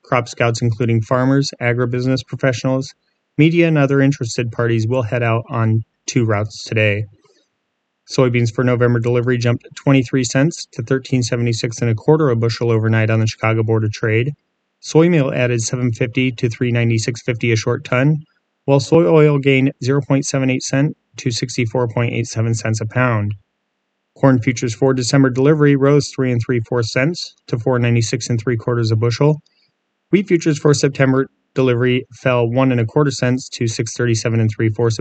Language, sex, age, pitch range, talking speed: English, male, 30-49, 115-135 Hz, 155 wpm